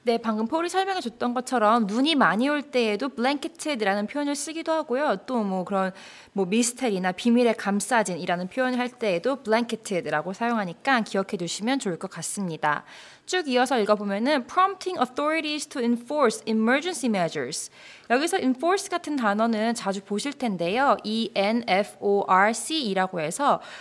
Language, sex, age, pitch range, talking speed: English, female, 20-39, 195-275 Hz, 120 wpm